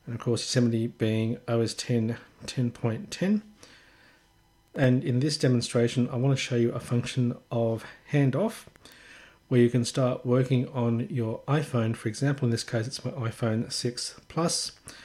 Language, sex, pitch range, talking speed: English, male, 115-130 Hz, 160 wpm